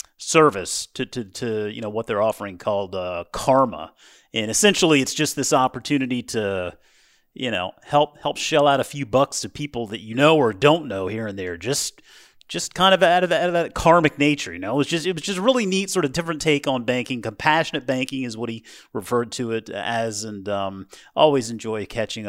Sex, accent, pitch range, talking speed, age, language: male, American, 110-150 Hz, 220 wpm, 40-59, English